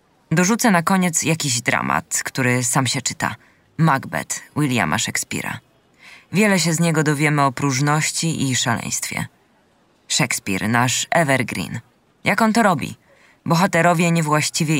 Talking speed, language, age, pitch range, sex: 120 wpm, Polish, 20-39, 130-165 Hz, female